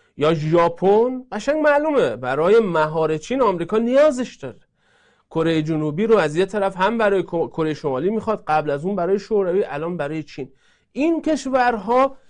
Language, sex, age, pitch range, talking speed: Persian, male, 40-59, 155-225 Hz, 150 wpm